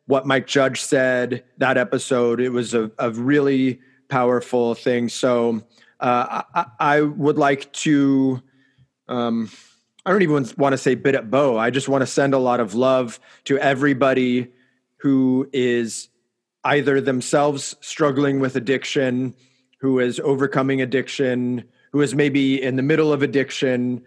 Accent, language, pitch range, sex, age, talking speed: American, English, 130-150 Hz, male, 30-49, 150 wpm